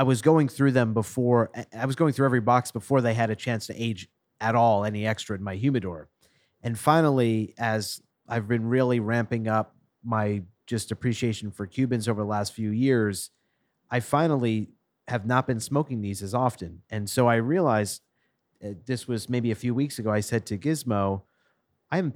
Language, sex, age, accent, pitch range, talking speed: English, male, 30-49, American, 105-130 Hz, 190 wpm